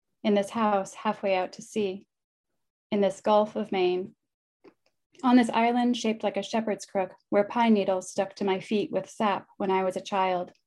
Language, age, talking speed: English, 10-29, 190 wpm